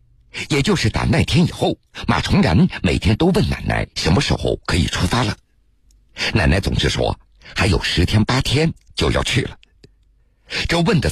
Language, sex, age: Chinese, male, 60-79